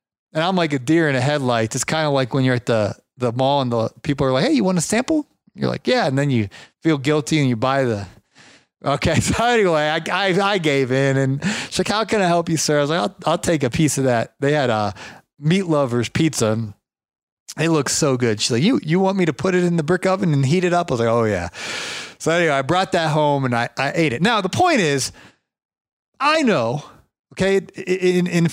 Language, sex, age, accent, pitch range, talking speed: English, male, 30-49, American, 135-180 Hz, 250 wpm